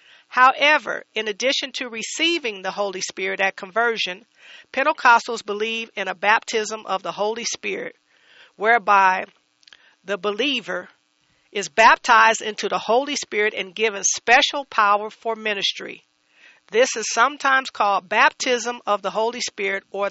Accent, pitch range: American, 205-240 Hz